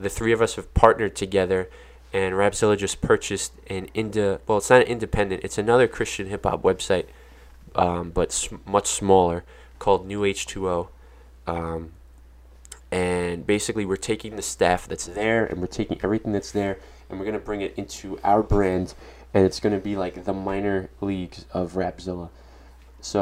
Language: English